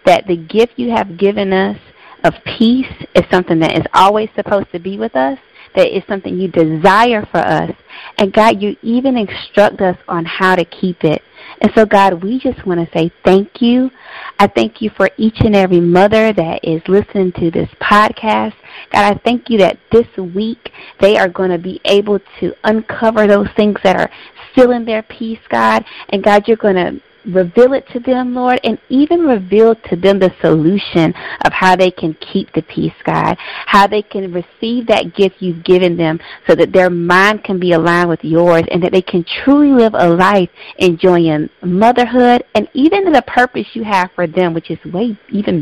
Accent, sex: American, female